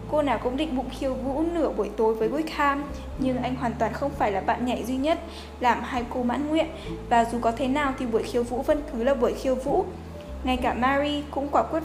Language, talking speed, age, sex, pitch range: Vietnamese, 250 wpm, 10-29, female, 230-290 Hz